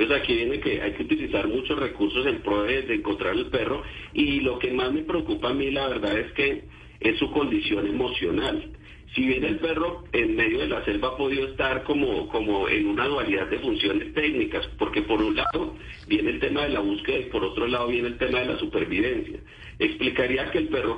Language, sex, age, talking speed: Spanish, male, 50-69, 215 wpm